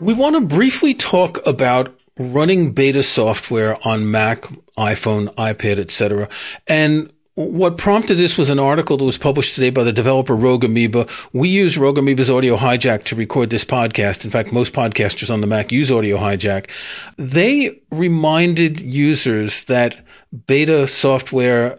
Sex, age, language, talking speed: male, 40-59, English, 155 wpm